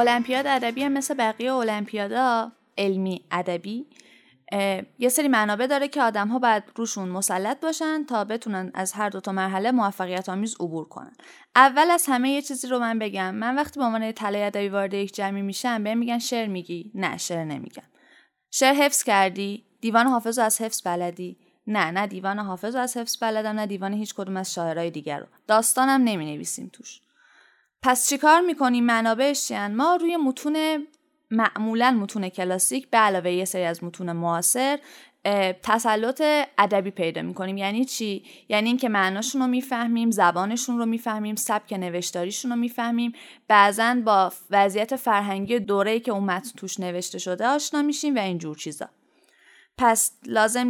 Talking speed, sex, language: 160 wpm, female, Persian